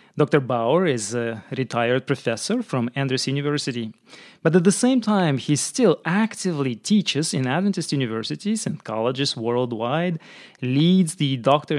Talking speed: 135 wpm